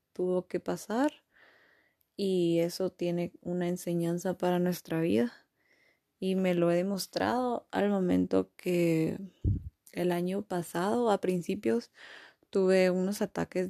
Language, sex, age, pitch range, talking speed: Spanish, female, 20-39, 170-195 Hz, 120 wpm